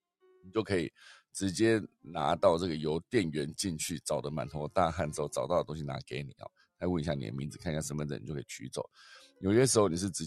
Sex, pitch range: male, 75-110 Hz